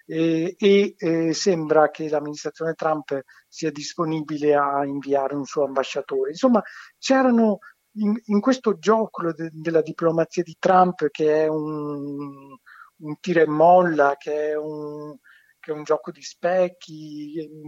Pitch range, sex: 140-170 Hz, male